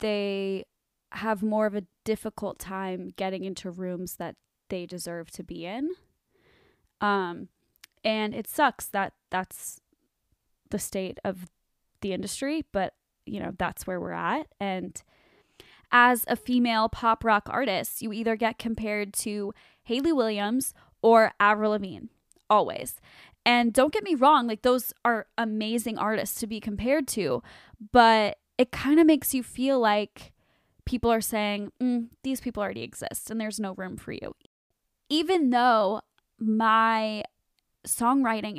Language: English